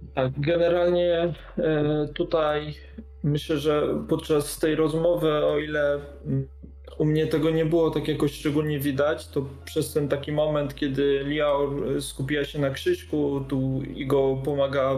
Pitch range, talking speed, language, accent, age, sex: 135-150 Hz, 130 wpm, Polish, native, 20-39, male